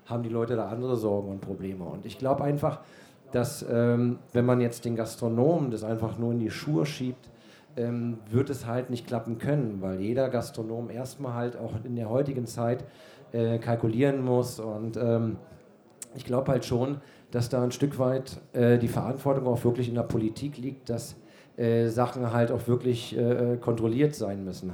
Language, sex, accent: German, male, German